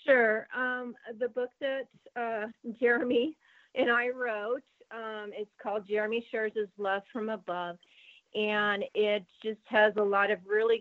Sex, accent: female, American